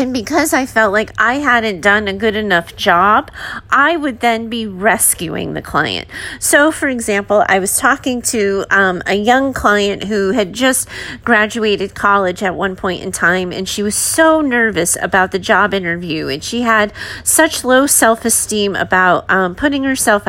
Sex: female